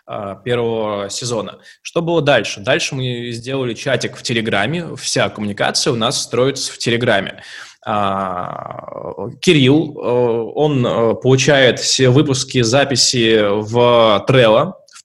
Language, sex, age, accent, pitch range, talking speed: Russian, male, 20-39, native, 105-130 Hz, 110 wpm